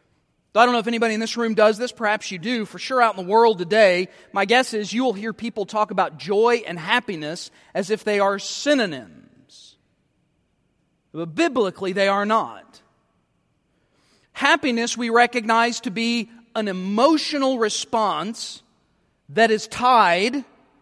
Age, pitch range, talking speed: 40-59, 200-245 Hz, 155 wpm